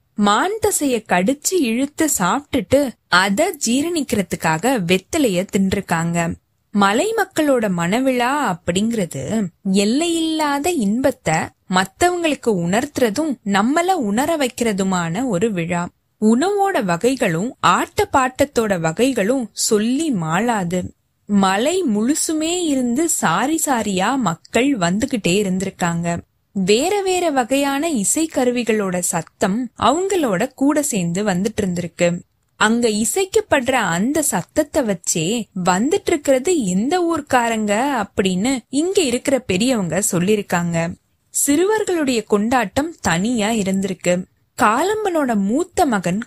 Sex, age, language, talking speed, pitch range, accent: female, 20-39, Tamil, 85 wpm, 195-285 Hz, native